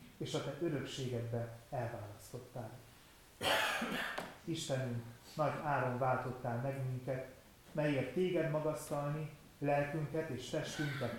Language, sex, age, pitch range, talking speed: Hungarian, male, 30-49, 120-145 Hz, 90 wpm